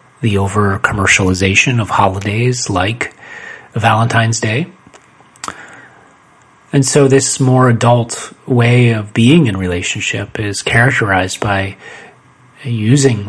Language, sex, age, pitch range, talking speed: English, male, 30-49, 100-120 Hz, 100 wpm